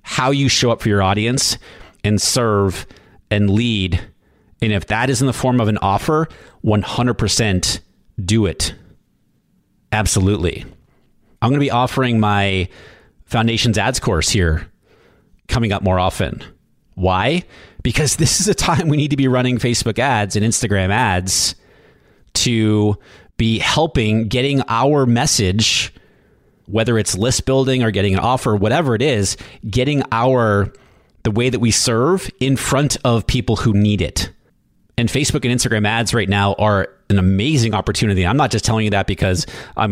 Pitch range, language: 95-120 Hz, English